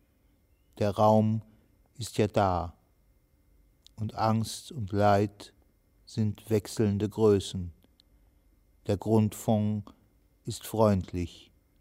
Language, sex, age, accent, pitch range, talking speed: German, male, 60-79, German, 90-110 Hz, 80 wpm